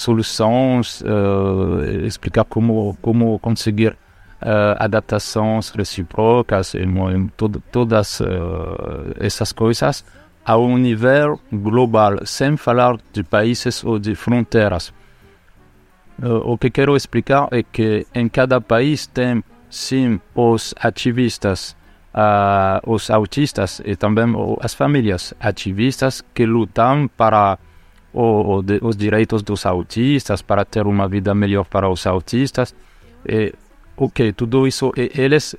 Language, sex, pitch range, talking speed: Portuguese, male, 100-120 Hz, 125 wpm